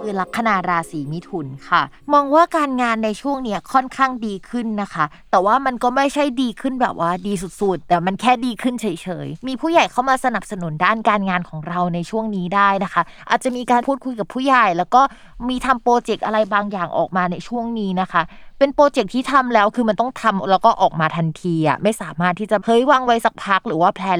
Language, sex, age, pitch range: Thai, female, 20-39, 180-245 Hz